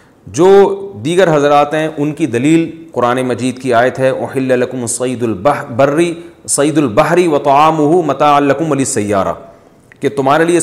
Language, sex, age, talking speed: Urdu, male, 40-59, 135 wpm